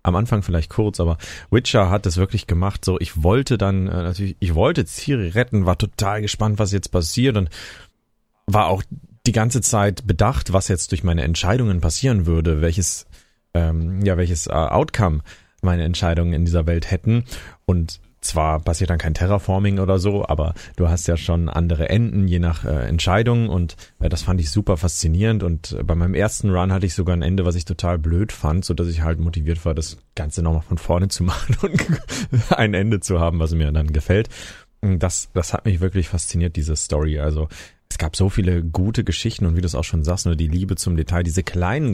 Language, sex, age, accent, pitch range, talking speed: German, male, 30-49, German, 85-100 Hz, 205 wpm